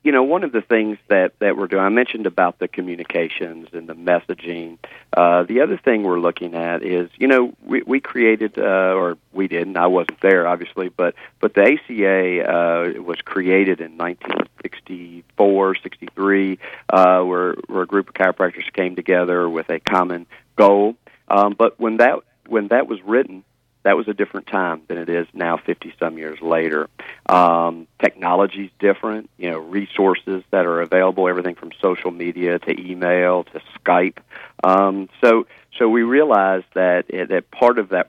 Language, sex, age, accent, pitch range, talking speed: English, male, 40-59, American, 85-100 Hz, 175 wpm